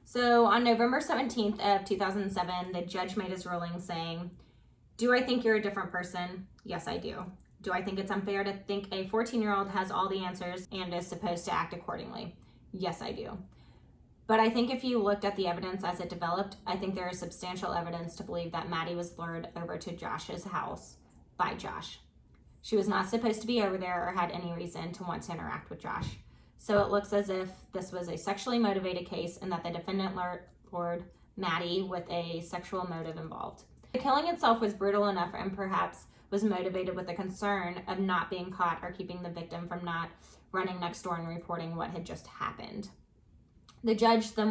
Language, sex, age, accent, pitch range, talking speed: English, female, 20-39, American, 175-200 Hz, 200 wpm